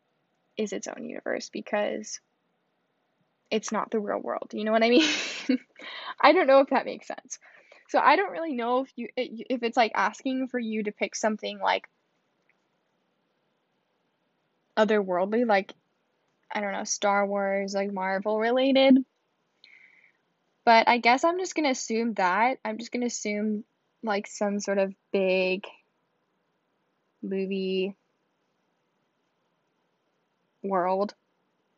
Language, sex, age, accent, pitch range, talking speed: English, female, 10-29, American, 200-245 Hz, 130 wpm